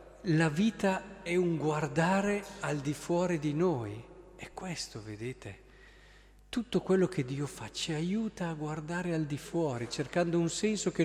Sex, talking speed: male, 160 wpm